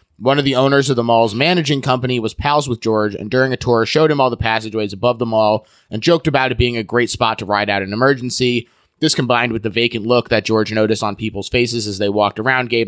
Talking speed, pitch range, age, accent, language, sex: 255 wpm, 105-135 Hz, 20-39, American, English, male